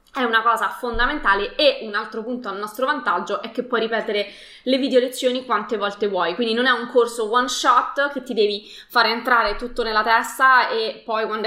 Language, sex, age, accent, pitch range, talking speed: Italian, female, 20-39, native, 215-265 Hz, 210 wpm